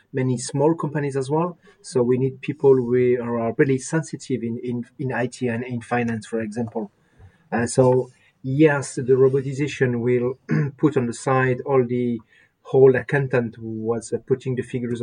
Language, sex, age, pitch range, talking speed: French, male, 30-49, 120-135 Hz, 170 wpm